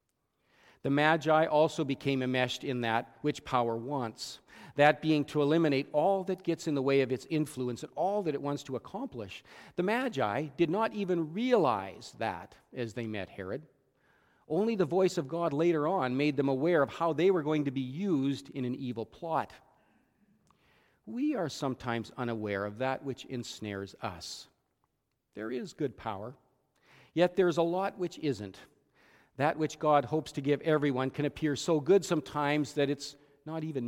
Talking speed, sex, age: 175 wpm, male, 40-59